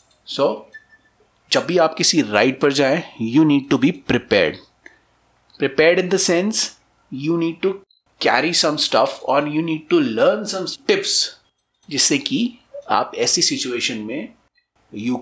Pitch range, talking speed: 145-220 Hz, 140 wpm